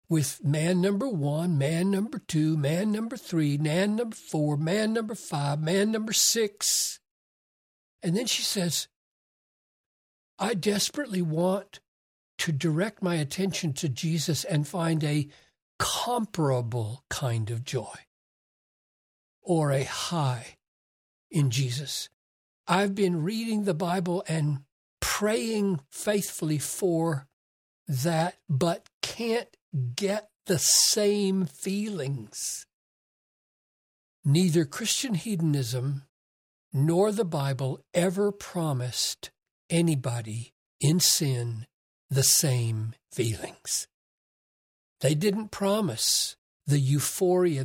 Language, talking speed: English, 100 wpm